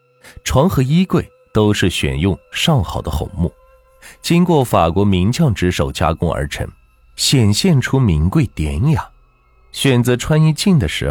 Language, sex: Chinese, male